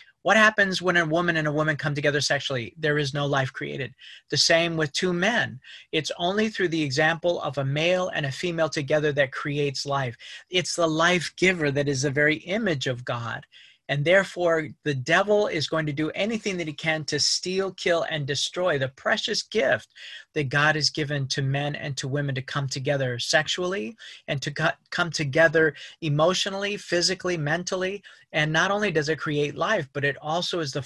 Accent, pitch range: American, 140-170 Hz